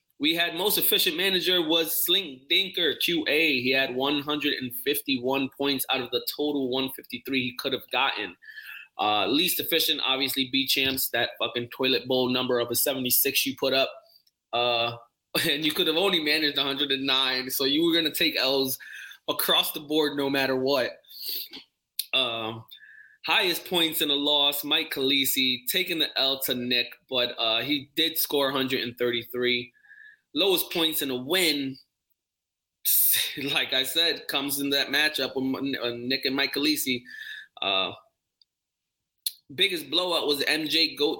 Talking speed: 145 wpm